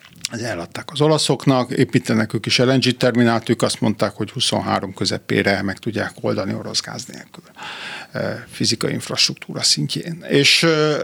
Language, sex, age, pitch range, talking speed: Hungarian, male, 50-69, 110-135 Hz, 125 wpm